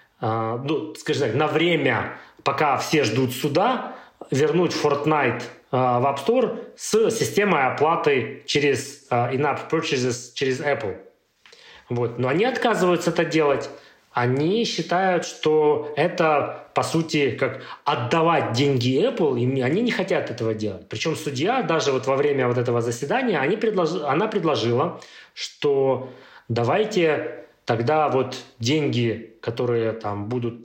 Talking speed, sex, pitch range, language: 135 wpm, male, 120-165 Hz, Russian